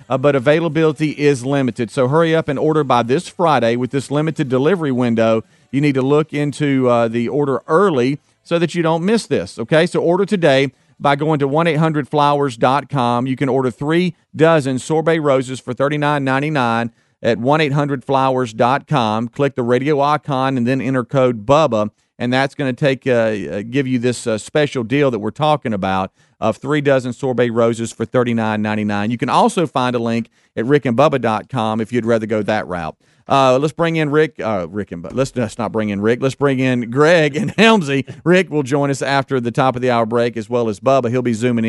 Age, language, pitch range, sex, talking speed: 40-59, English, 115-145 Hz, male, 205 wpm